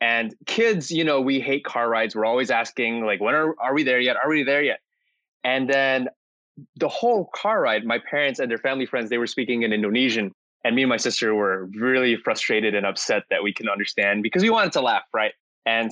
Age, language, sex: 20-39, English, male